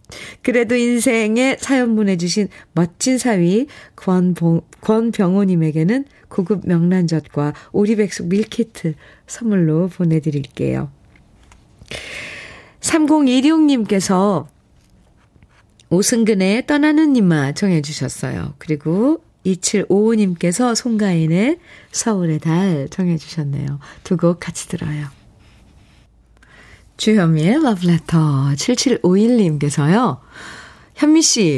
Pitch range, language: 160-240 Hz, Korean